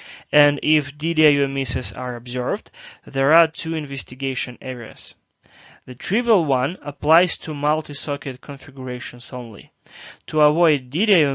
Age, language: 20-39, English